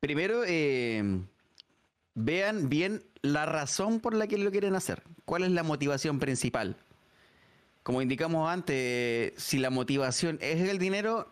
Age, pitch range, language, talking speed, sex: 30-49, 135-185 Hz, Spanish, 140 wpm, male